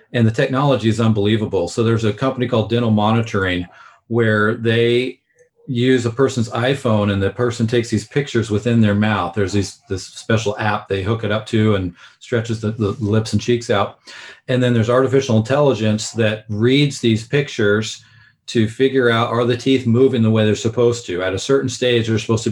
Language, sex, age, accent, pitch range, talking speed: English, male, 40-59, American, 110-130 Hz, 190 wpm